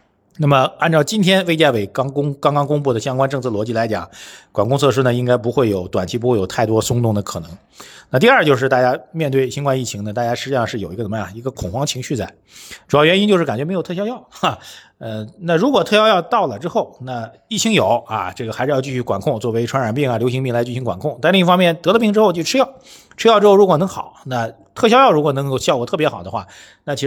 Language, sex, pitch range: Chinese, male, 110-165 Hz